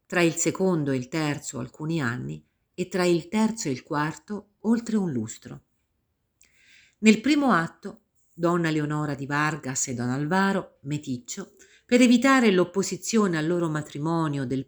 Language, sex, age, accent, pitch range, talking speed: Italian, female, 50-69, native, 145-205 Hz, 145 wpm